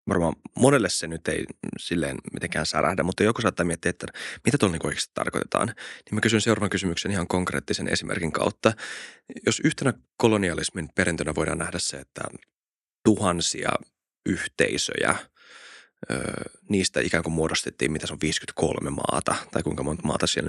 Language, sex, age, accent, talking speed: Finnish, male, 20-39, native, 145 wpm